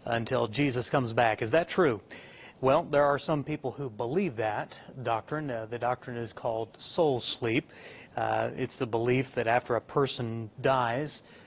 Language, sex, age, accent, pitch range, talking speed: English, male, 30-49, American, 115-135 Hz, 170 wpm